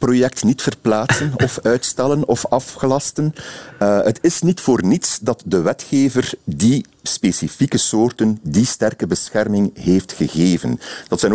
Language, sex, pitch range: Dutch, male, 95-125 Hz